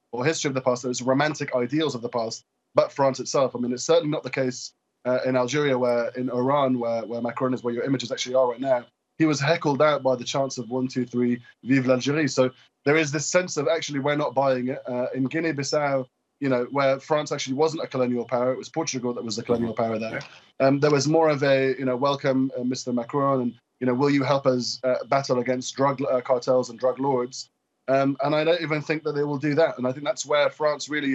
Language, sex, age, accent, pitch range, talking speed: English, male, 20-39, British, 125-150 Hz, 250 wpm